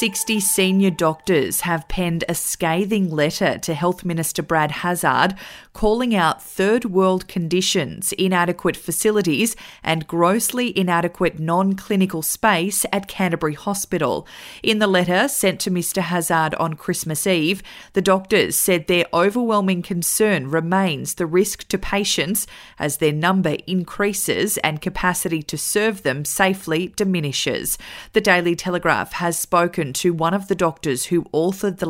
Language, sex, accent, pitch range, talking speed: English, female, Australian, 165-195 Hz, 135 wpm